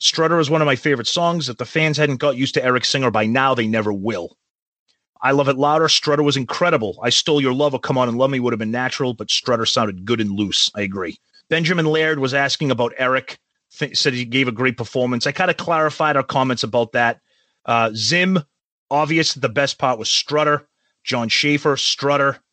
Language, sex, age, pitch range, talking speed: English, male, 30-49, 125-160 Hz, 220 wpm